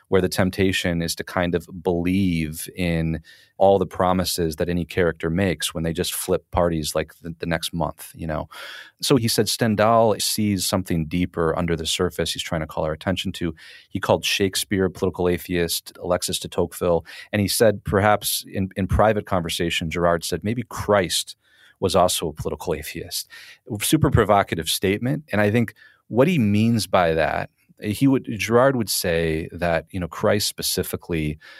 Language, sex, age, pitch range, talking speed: English, male, 40-59, 85-100 Hz, 175 wpm